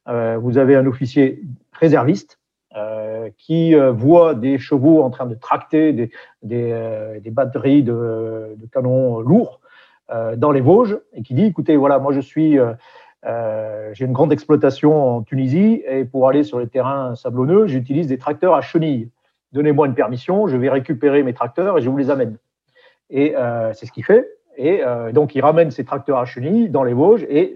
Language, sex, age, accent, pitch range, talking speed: French, male, 50-69, French, 120-155 Hz, 190 wpm